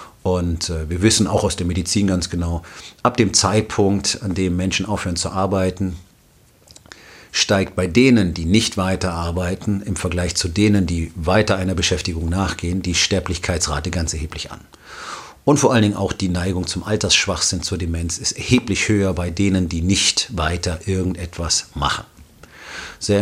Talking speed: 160 wpm